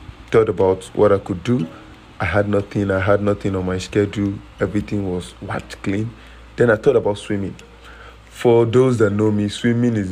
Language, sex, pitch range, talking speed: English, male, 100-115 Hz, 185 wpm